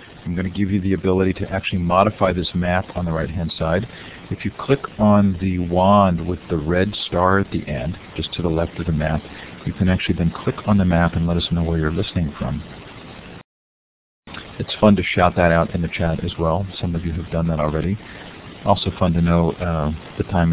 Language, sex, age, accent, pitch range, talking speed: English, male, 40-59, American, 85-100 Hz, 225 wpm